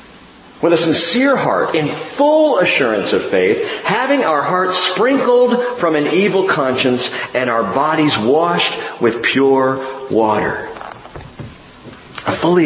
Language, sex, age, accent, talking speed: English, male, 50-69, American, 125 wpm